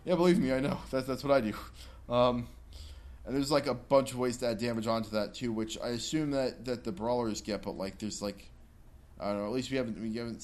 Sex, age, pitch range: male, 20-39, 95-115 Hz